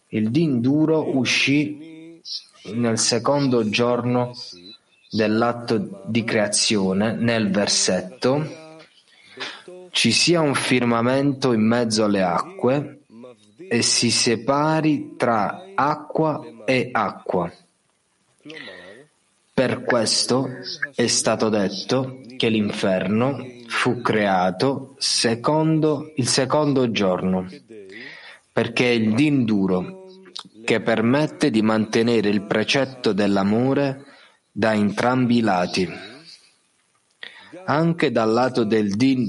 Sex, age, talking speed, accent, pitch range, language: male, 30-49, 90 wpm, native, 110-140 Hz, Italian